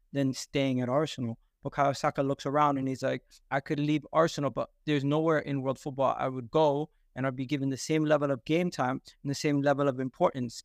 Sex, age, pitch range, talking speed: male, 20-39, 140-175 Hz, 225 wpm